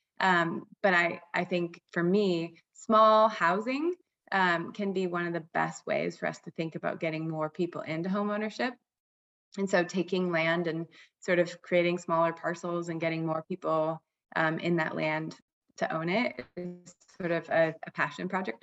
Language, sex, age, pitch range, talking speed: English, female, 20-39, 165-195 Hz, 180 wpm